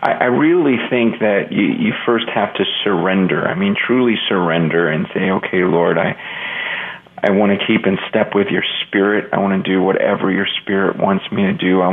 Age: 40-59